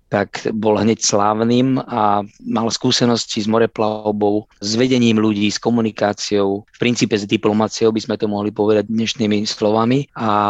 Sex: male